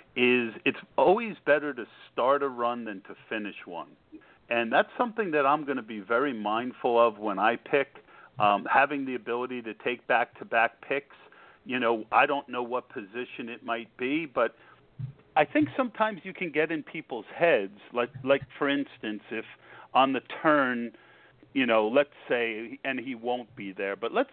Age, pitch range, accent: 50-69, 120-170 Hz, American